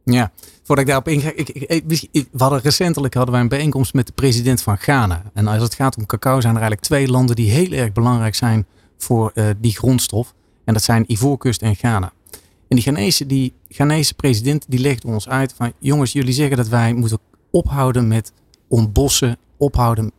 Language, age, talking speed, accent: Dutch, 40-59, 185 wpm, Dutch